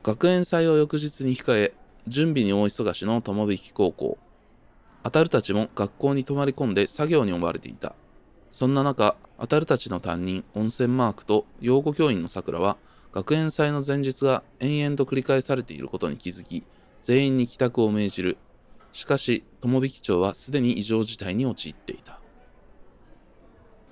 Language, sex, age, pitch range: Japanese, male, 20-39, 105-170 Hz